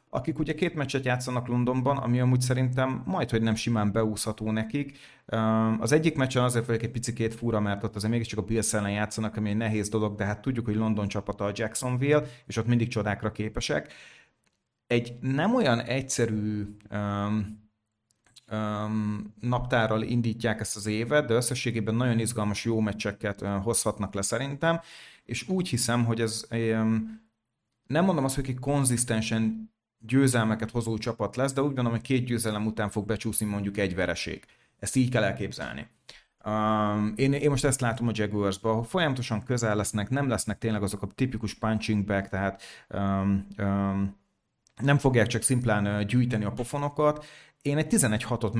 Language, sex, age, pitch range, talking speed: Hungarian, male, 30-49, 105-125 Hz, 165 wpm